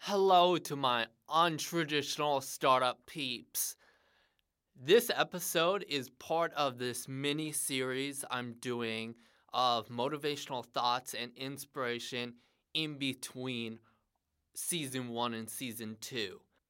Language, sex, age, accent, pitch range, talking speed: English, male, 20-39, American, 120-160 Hz, 95 wpm